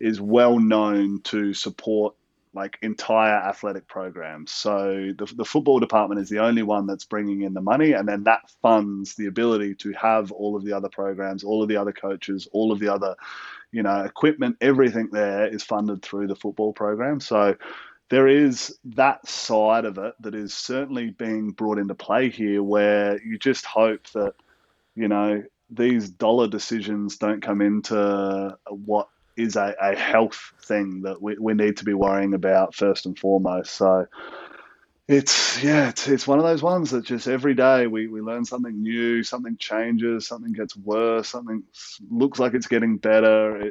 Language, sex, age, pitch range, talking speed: English, male, 20-39, 100-115 Hz, 180 wpm